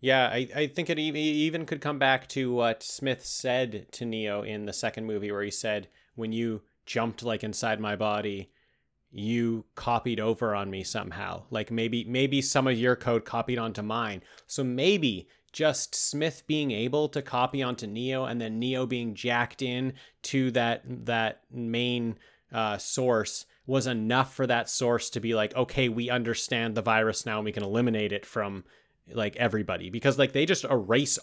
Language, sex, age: English, male, 30-49